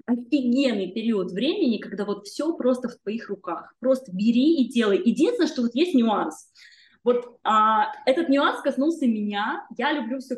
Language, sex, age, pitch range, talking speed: Russian, female, 20-39, 225-265 Hz, 160 wpm